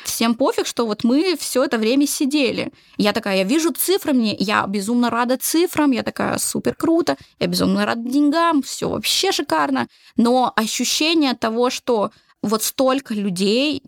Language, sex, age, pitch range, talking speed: Russian, female, 20-39, 210-265 Hz, 160 wpm